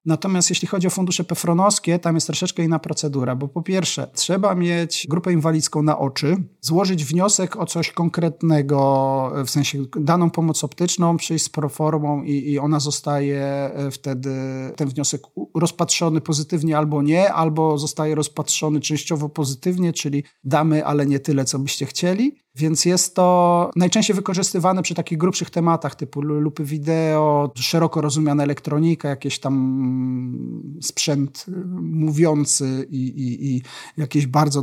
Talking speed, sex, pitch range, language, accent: 140 wpm, male, 135-170 Hz, Polish, native